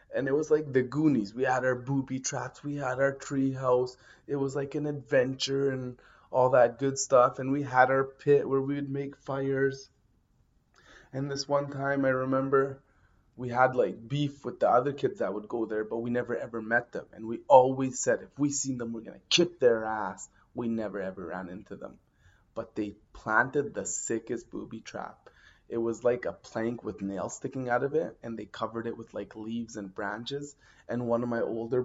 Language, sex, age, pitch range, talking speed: English, male, 20-39, 115-135 Hz, 210 wpm